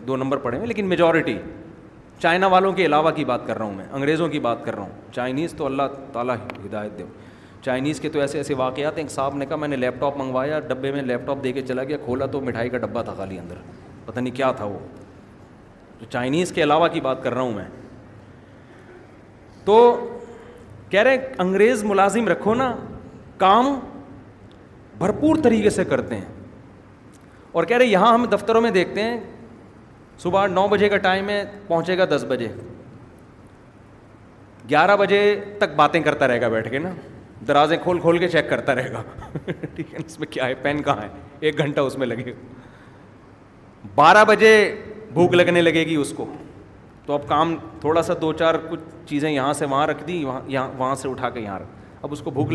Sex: male